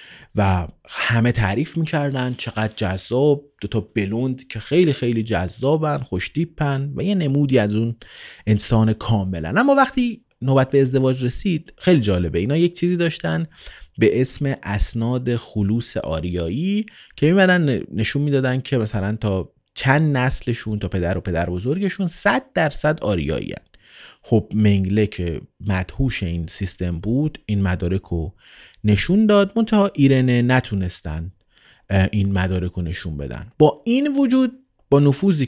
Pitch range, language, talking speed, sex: 100-150 Hz, Persian, 135 wpm, male